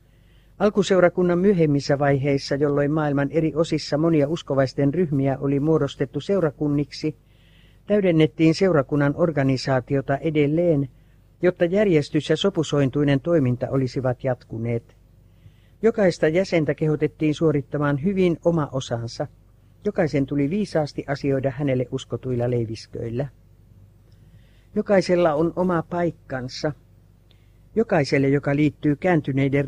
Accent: native